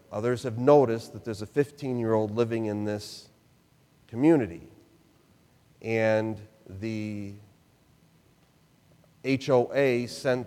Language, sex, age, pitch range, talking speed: English, male, 40-59, 110-135 Hz, 85 wpm